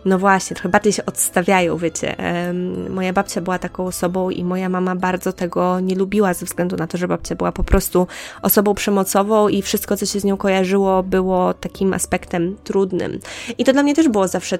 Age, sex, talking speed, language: 20-39, female, 195 wpm, Polish